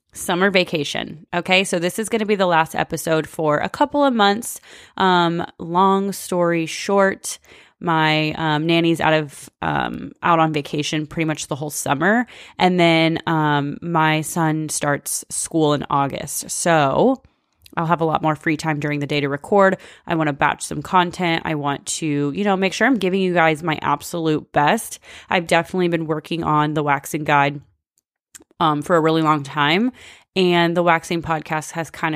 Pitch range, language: 150-175 Hz, English